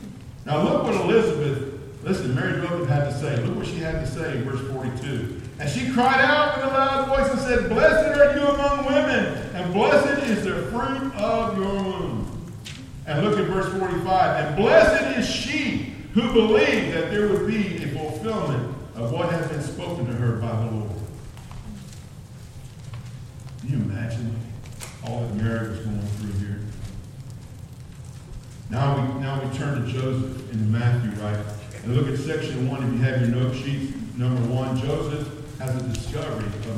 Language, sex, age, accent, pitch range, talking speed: English, male, 50-69, American, 120-155 Hz, 175 wpm